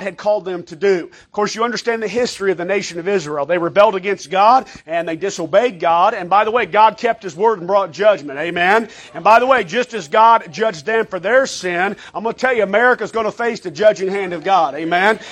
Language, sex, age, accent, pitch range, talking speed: English, male, 40-59, American, 195-240 Hz, 245 wpm